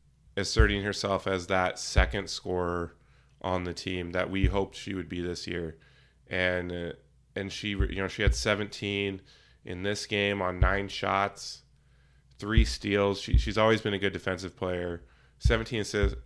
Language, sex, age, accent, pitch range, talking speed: English, male, 20-39, American, 95-110 Hz, 160 wpm